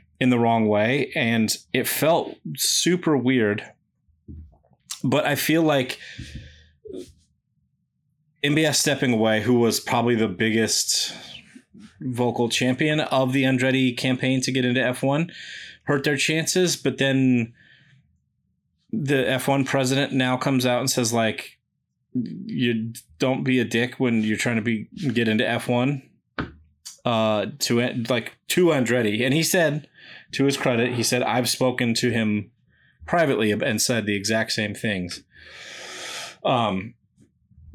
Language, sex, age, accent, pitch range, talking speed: English, male, 30-49, American, 115-145 Hz, 130 wpm